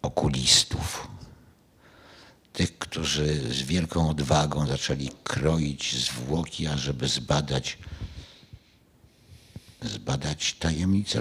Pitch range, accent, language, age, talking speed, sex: 80-110 Hz, native, Polish, 60-79, 70 wpm, male